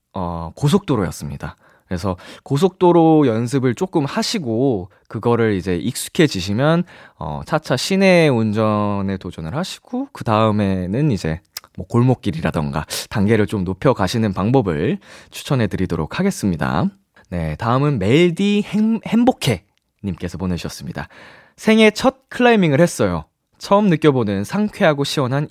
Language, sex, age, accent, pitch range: Korean, male, 20-39, native, 95-155 Hz